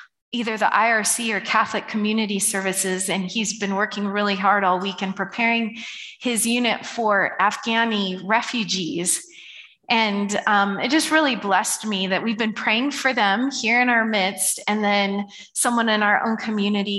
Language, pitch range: English, 195-235 Hz